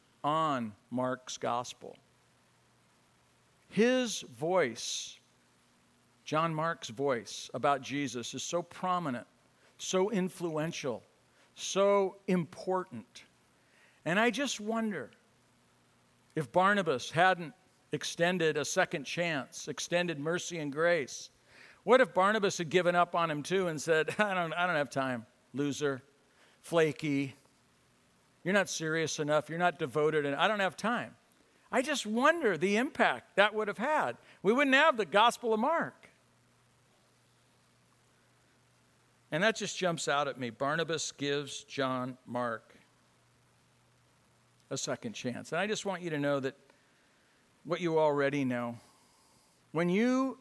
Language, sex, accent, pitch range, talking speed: English, male, American, 140-185 Hz, 125 wpm